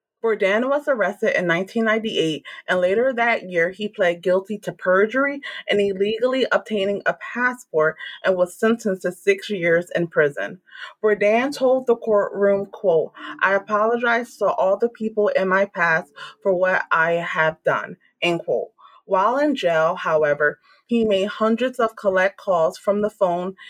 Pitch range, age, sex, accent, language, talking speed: 185-225 Hz, 30-49, female, American, English, 155 wpm